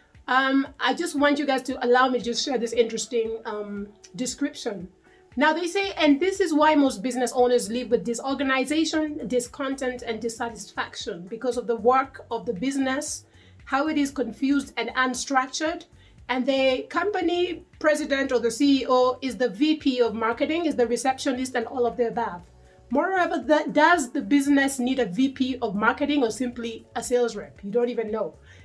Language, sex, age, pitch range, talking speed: English, female, 30-49, 235-285 Hz, 175 wpm